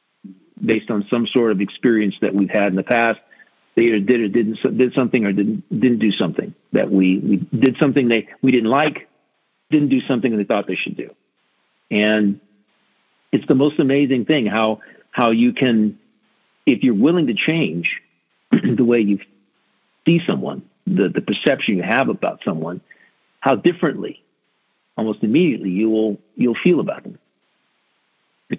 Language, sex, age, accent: English, male, 50-69, American